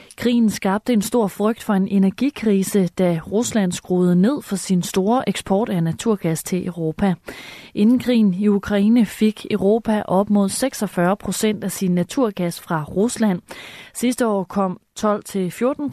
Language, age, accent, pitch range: Danish, 30-49, native, 185-225 Hz